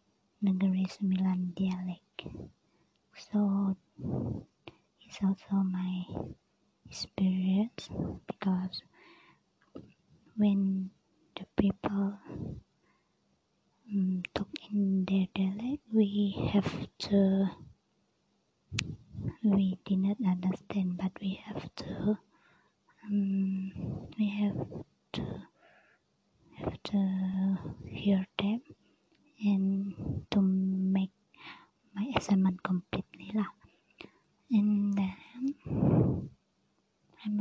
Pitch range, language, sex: 190-205 Hz, English, male